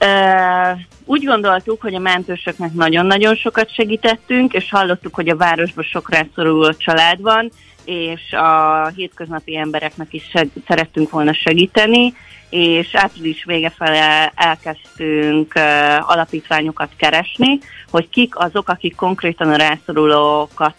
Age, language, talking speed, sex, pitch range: 30-49, Hungarian, 120 wpm, female, 155-185 Hz